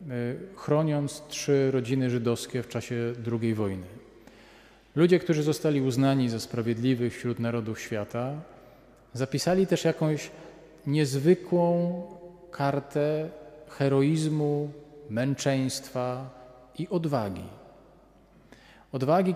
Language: Polish